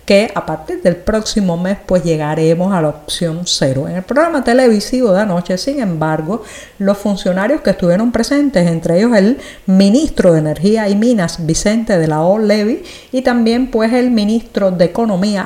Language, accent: Spanish, American